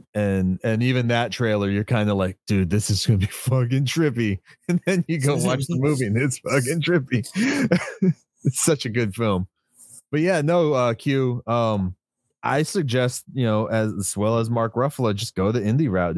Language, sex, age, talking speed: English, male, 30-49, 195 wpm